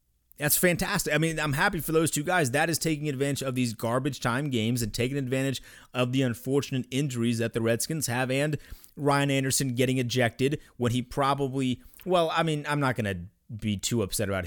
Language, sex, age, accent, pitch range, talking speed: English, male, 30-49, American, 105-130 Hz, 205 wpm